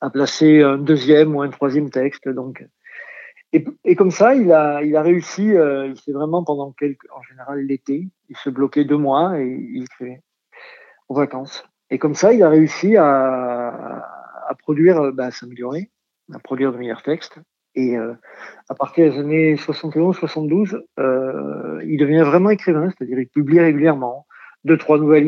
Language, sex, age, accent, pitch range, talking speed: French, male, 50-69, French, 135-165 Hz, 175 wpm